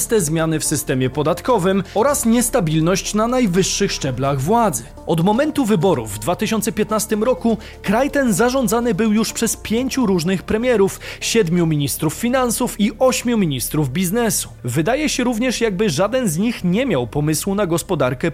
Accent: native